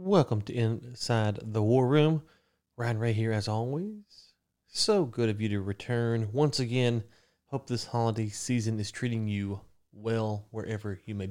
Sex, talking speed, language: male, 160 wpm, English